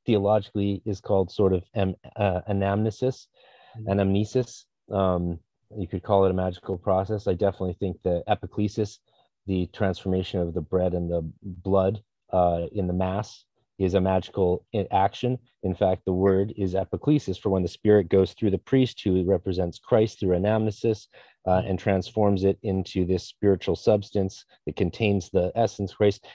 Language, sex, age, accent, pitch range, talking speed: English, male, 30-49, American, 95-105 Hz, 160 wpm